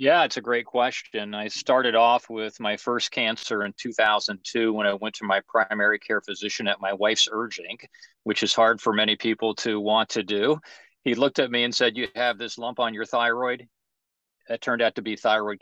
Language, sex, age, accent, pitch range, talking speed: English, male, 40-59, American, 105-120 Hz, 210 wpm